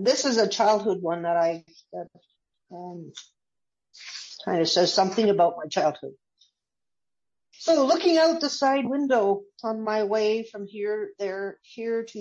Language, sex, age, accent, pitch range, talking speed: English, female, 60-79, American, 175-210 Hz, 145 wpm